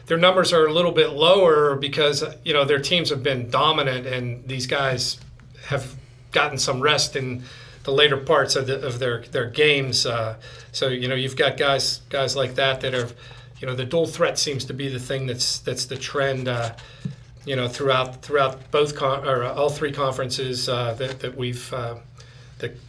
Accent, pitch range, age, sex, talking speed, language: American, 125-145 Hz, 40-59, male, 200 wpm, English